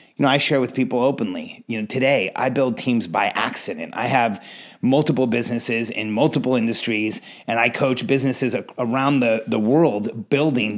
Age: 30-49